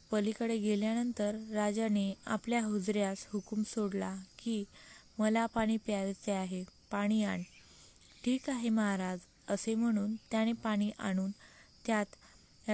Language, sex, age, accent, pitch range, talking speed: Marathi, female, 20-39, native, 200-225 Hz, 110 wpm